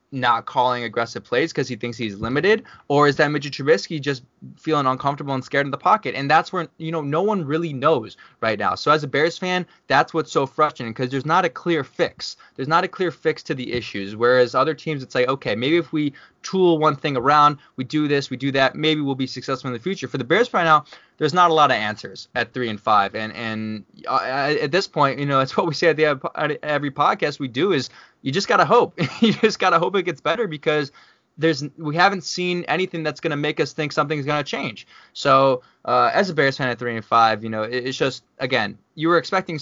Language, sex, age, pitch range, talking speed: English, male, 20-39, 130-165 Hz, 250 wpm